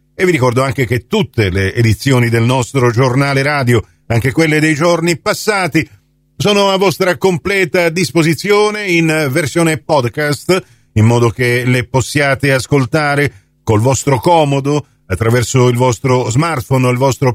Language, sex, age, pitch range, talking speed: Italian, male, 50-69, 125-180 Hz, 140 wpm